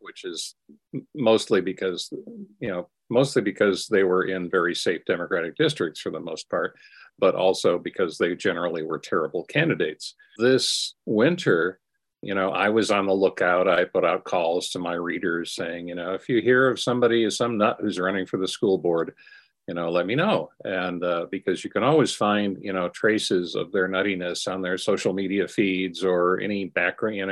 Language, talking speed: English, 185 wpm